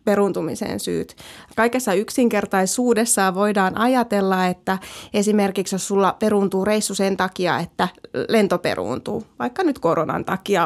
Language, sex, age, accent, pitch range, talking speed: Finnish, female, 20-39, native, 195-240 Hz, 120 wpm